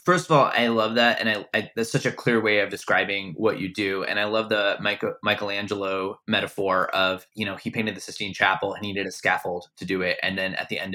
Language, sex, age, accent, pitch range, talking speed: English, male, 20-39, American, 100-115 Hz, 260 wpm